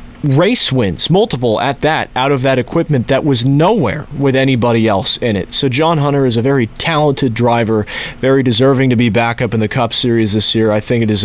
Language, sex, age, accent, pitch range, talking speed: English, male, 30-49, American, 110-135 Hz, 220 wpm